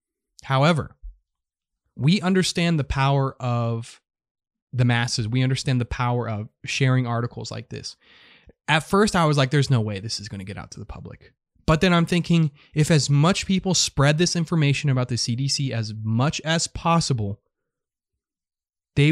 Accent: American